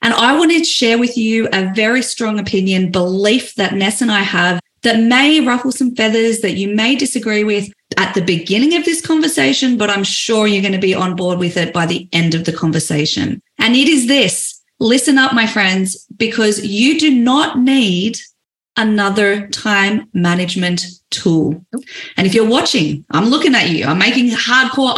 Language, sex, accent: English, female, Australian